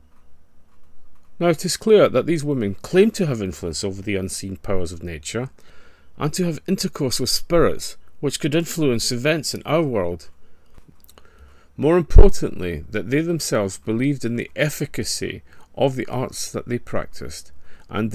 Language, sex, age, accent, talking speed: English, male, 40-59, British, 150 wpm